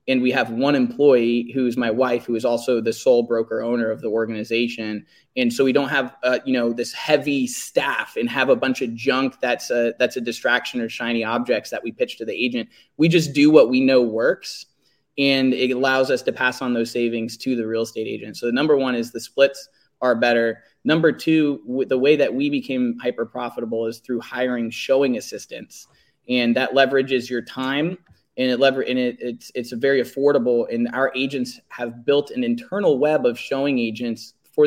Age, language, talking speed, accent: 20-39, English, 205 wpm, American